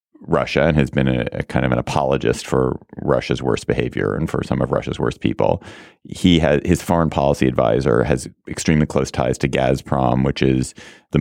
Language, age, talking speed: English, 30-49, 195 wpm